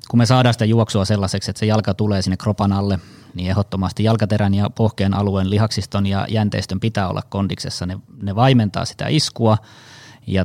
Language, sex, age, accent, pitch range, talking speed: Finnish, male, 20-39, native, 100-115 Hz, 180 wpm